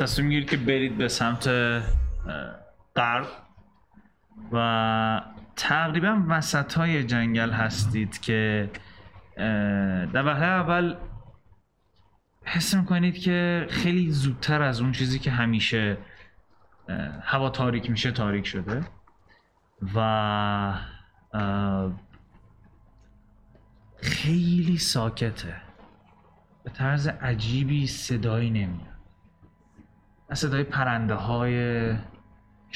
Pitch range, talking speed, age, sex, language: 95-130 Hz, 80 wpm, 30-49, male, Persian